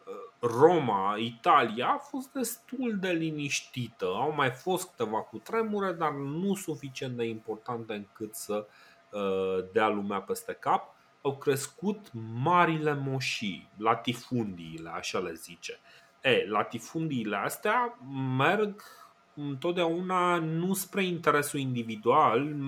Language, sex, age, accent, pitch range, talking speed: Romanian, male, 30-49, native, 125-185 Hz, 110 wpm